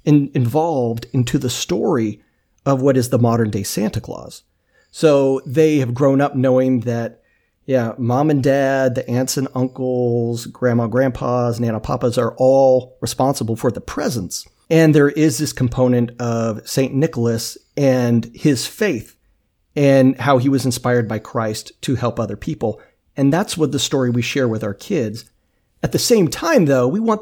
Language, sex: English, male